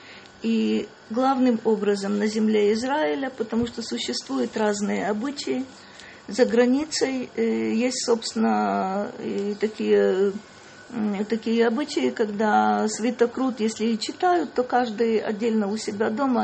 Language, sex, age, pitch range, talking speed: Russian, female, 40-59, 205-235 Hz, 110 wpm